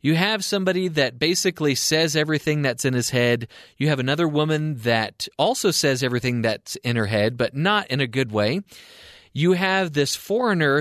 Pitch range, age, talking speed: 120-180 Hz, 30-49, 185 wpm